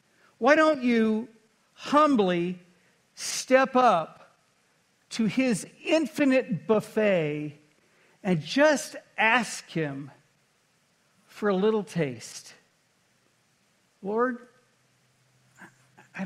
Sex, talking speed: male, 75 wpm